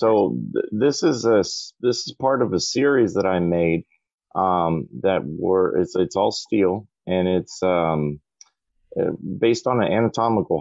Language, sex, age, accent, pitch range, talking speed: English, male, 40-59, American, 80-100 Hz, 160 wpm